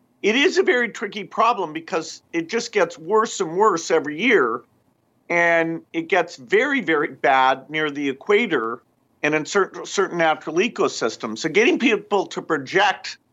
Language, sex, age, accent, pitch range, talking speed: English, male, 50-69, American, 145-200 Hz, 160 wpm